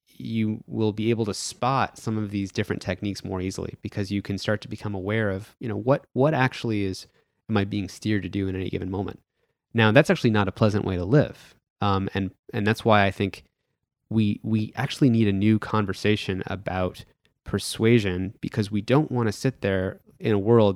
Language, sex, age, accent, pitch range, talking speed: English, male, 20-39, American, 95-115 Hz, 205 wpm